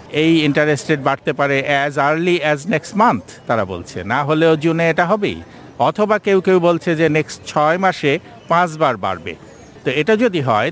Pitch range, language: 135-175 Hz, Bengali